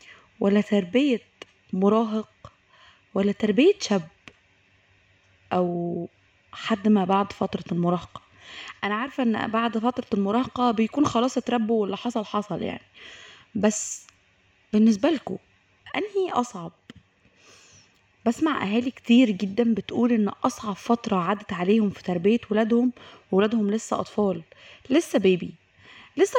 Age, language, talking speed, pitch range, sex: 20-39, Arabic, 115 wpm, 195-245 Hz, female